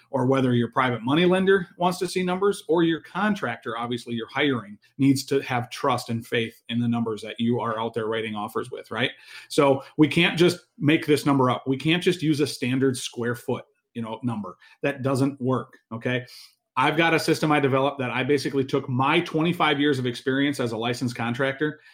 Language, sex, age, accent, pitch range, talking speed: English, male, 40-59, American, 125-160 Hz, 210 wpm